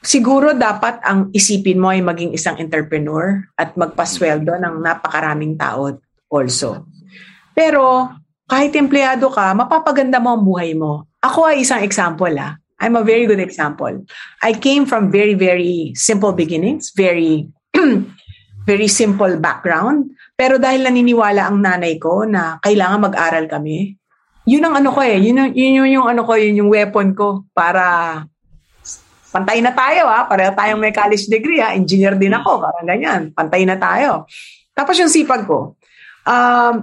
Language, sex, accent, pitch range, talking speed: English, female, Filipino, 170-245 Hz, 155 wpm